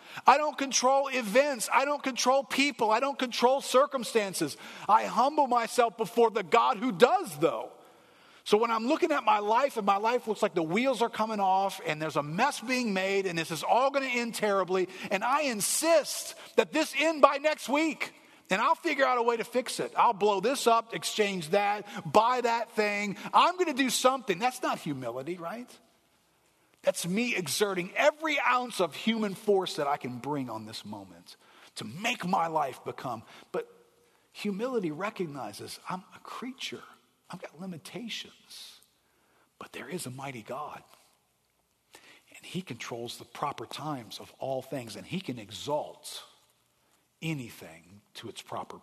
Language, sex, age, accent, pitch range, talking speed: English, male, 40-59, American, 180-260 Hz, 170 wpm